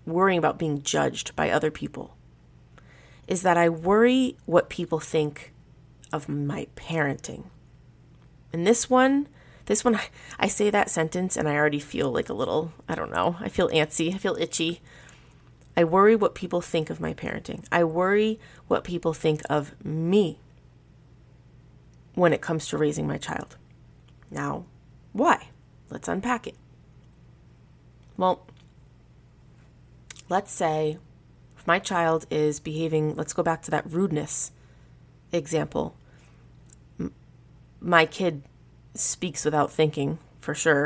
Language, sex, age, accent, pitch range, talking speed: English, female, 30-49, American, 145-175 Hz, 130 wpm